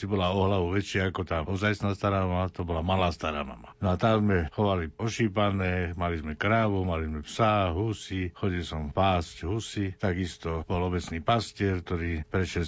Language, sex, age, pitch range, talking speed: Slovak, male, 60-79, 90-110 Hz, 170 wpm